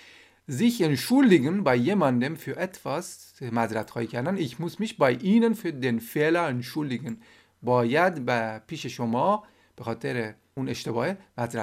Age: 40-59